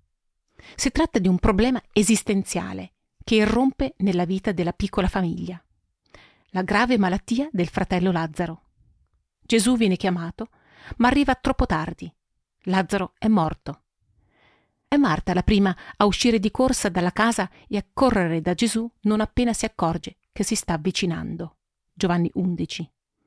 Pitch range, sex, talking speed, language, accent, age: 180-230 Hz, female, 140 wpm, Italian, native, 40-59